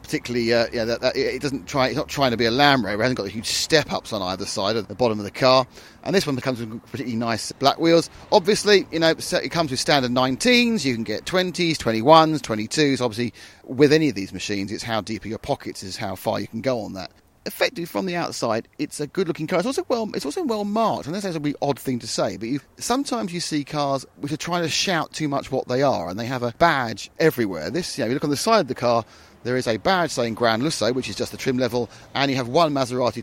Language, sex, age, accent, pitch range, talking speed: English, male, 30-49, British, 115-155 Hz, 270 wpm